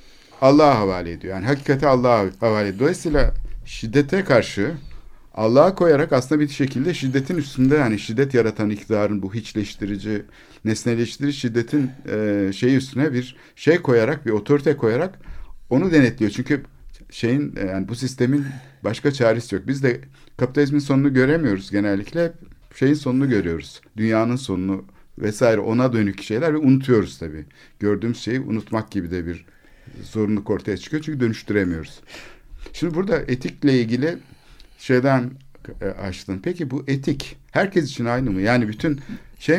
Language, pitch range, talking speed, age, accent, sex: Turkish, 100-135 Hz, 135 wpm, 50-69, native, male